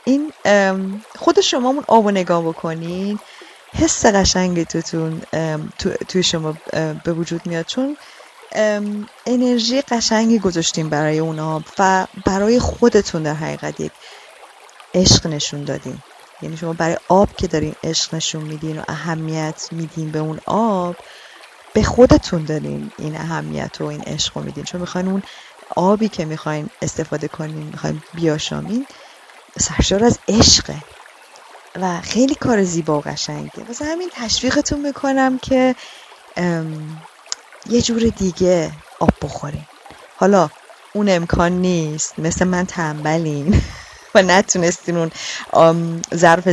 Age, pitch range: 30-49, 160-225 Hz